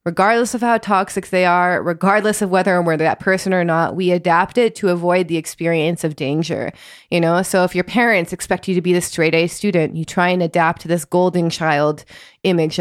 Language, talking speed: English, 220 wpm